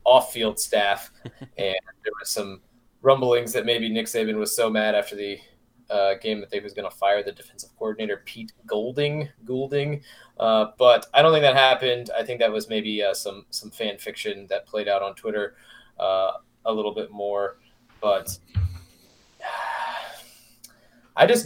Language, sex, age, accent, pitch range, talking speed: English, male, 20-39, American, 110-135 Hz, 175 wpm